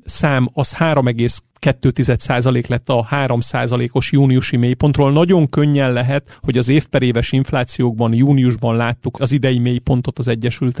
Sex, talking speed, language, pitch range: male, 130 wpm, Hungarian, 125-155 Hz